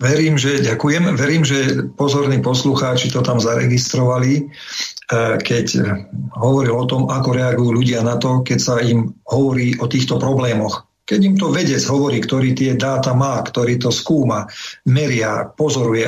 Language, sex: Slovak, male